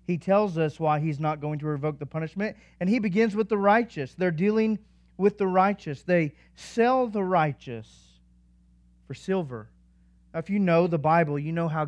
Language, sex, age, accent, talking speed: English, male, 40-59, American, 185 wpm